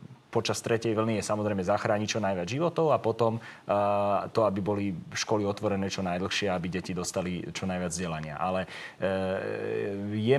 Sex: male